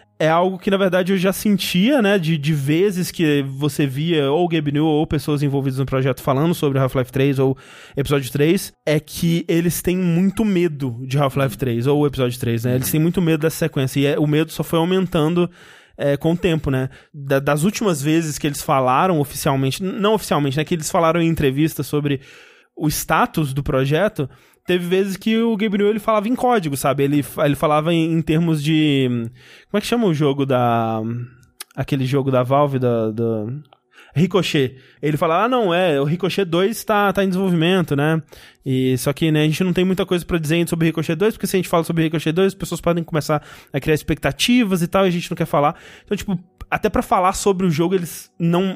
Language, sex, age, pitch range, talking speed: Portuguese, male, 20-39, 140-185 Hz, 215 wpm